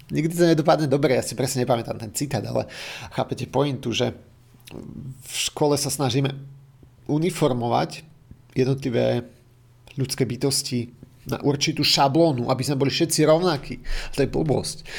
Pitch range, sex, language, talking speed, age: 125-145 Hz, male, Slovak, 130 wpm, 40-59